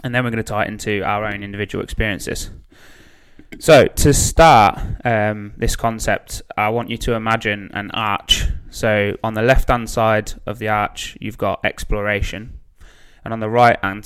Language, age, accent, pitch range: English, 20-39, British, 100-115 Hz